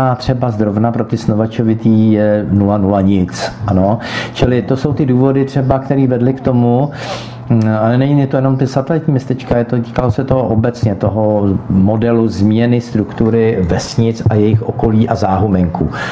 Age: 50-69